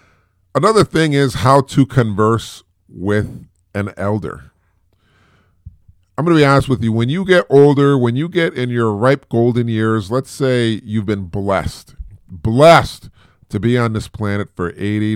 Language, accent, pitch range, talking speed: English, American, 90-125 Hz, 160 wpm